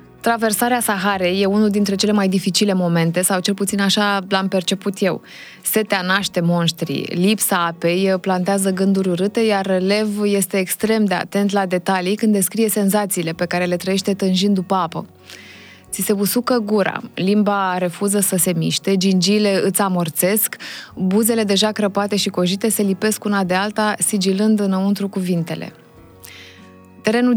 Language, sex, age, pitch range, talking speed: Romanian, female, 20-39, 185-210 Hz, 150 wpm